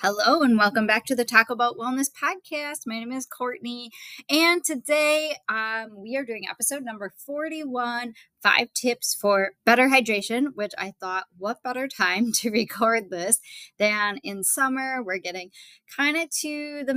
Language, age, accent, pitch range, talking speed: English, 20-39, American, 195-260 Hz, 165 wpm